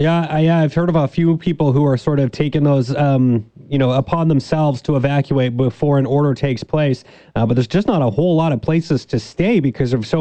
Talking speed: 245 wpm